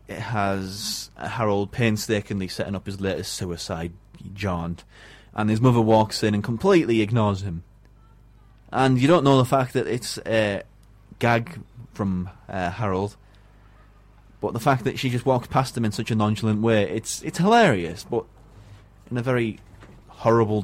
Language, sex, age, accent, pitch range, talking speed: English, male, 20-39, British, 105-125 Hz, 155 wpm